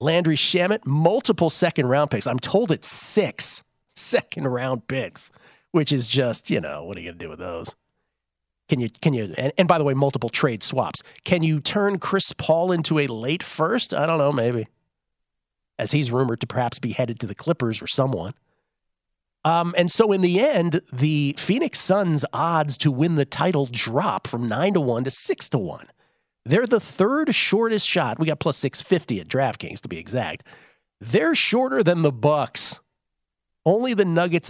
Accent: American